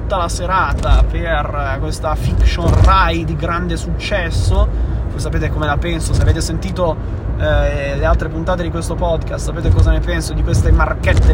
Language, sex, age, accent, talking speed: Italian, male, 20-39, native, 170 wpm